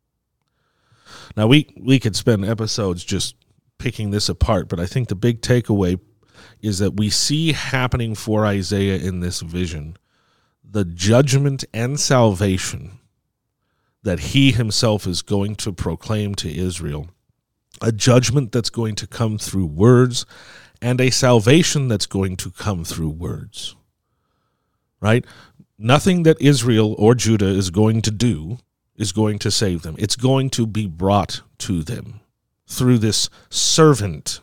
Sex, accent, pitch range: male, American, 95-120 Hz